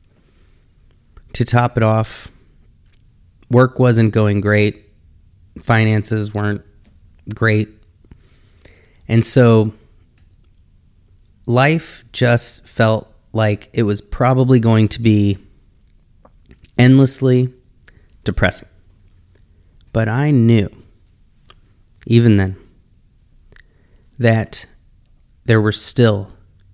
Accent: American